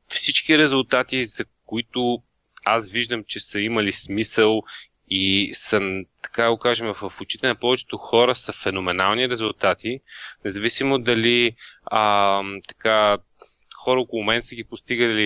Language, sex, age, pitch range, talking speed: Bulgarian, male, 20-39, 110-130 Hz, 130 wpm